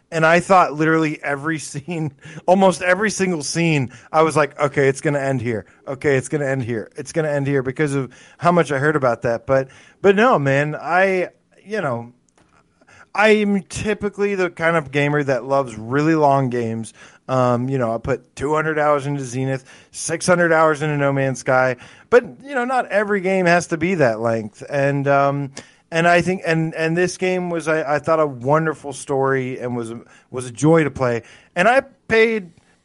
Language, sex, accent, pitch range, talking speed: English, male, American, 135-175 Hz, 195 wpm